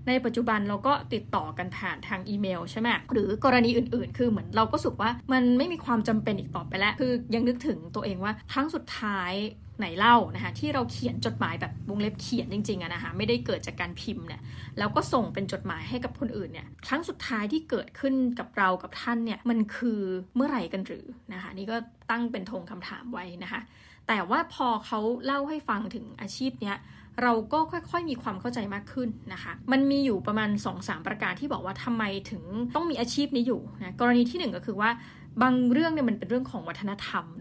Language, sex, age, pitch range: Thai, female, 20-39, 205-250 Hz